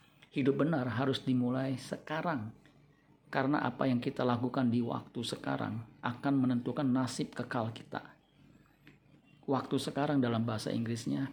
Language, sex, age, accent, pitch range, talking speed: Indonesian, male, 50-69, native, 120-140 Hz, 120 wpm